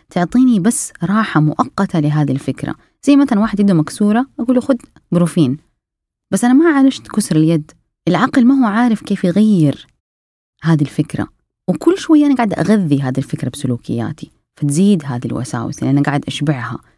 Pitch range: 145-215 Hz